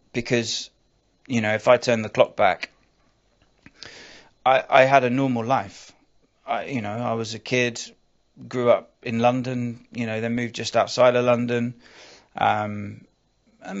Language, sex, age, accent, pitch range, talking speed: English, male, 30-49, British, 110-125 Hz, 155 wpm